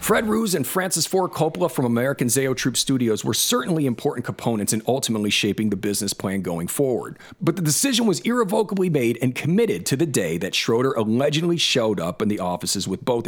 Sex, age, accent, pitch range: male, 40-59, American, 115-160 Hz